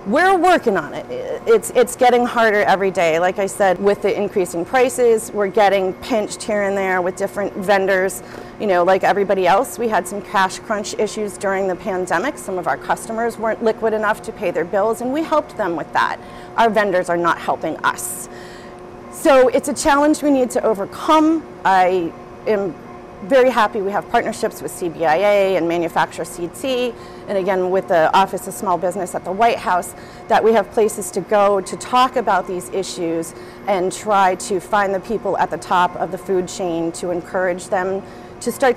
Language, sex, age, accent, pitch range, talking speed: English, female, 40-59, American, 185-235 Hz, 190 wpm